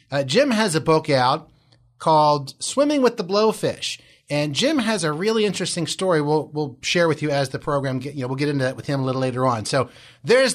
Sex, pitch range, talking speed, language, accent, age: male, 140-210 Hz, 235 wpm, English, American, 30-49